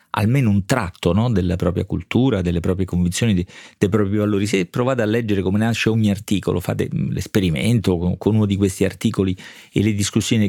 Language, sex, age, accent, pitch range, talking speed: Italian, male, 40-59, native, 95-115 Hz, 170 wpm